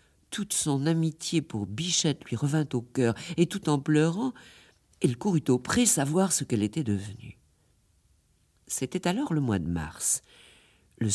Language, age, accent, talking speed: French, 50-69, French, 155 wpm